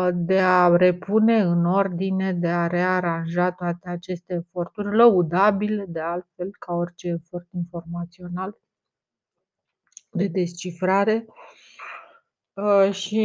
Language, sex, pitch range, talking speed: Romanian, female, 175-200 Hz, 95 wpm